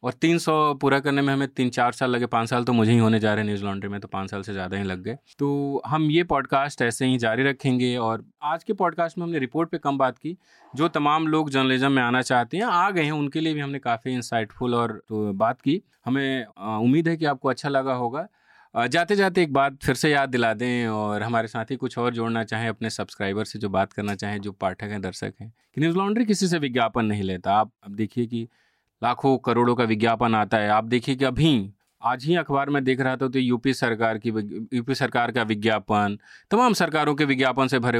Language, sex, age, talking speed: English, male, 30-49, 165 wpm